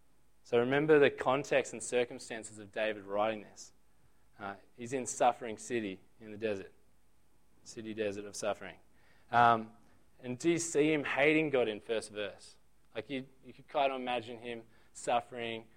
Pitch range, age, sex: 100-120 Hz, 20-39, male